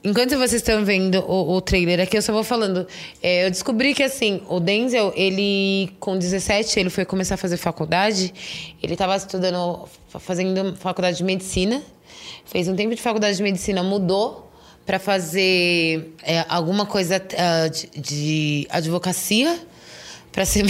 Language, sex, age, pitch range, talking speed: English, female, 20-39, 175-215 Hz, 155 wpm